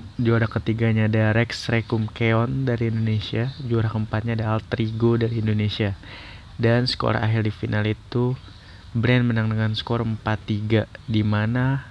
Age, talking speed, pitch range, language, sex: 20-39, 135 wpm, 105-120 Hz, Indonesian, male